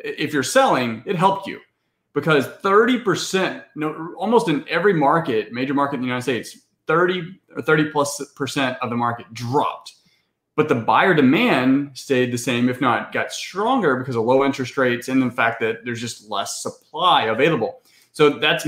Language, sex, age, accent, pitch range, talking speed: English, male, 30-49, American, 120-165 Hz, 180 wpm